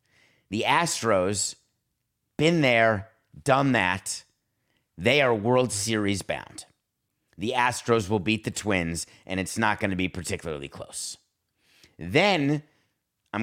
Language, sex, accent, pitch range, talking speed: English, male, American, 95-125 Hz, 115 wpm